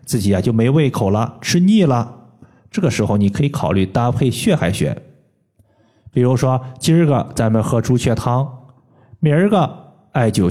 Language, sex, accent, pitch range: Chinese, male, native, 110-155 Hz